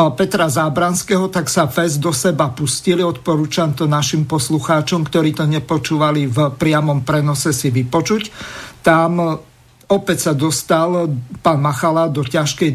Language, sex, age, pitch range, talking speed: Slovak, male, 50-69, 150-180 Hz, 130 wpm